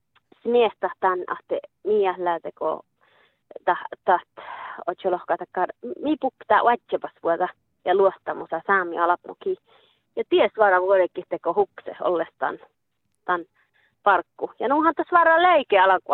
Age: 20-39